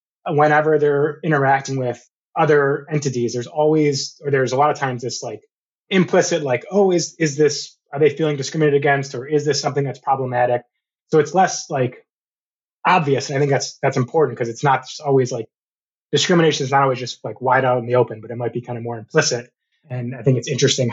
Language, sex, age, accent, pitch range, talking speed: English, male, 20-39, American, 125-155 Hz, 210 wpm